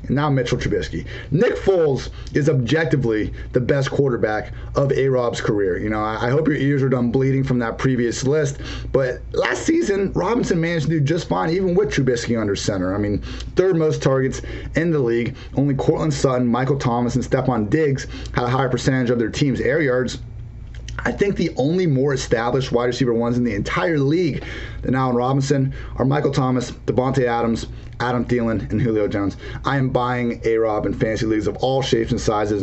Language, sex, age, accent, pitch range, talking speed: English, male, 30-49, American, 115-140 Hz, 190 wpm